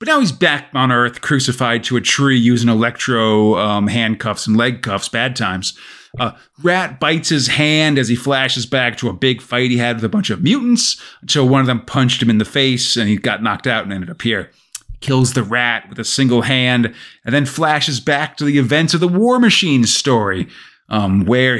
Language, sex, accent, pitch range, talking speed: English, male, American, 120-145 Hz, 215 wpm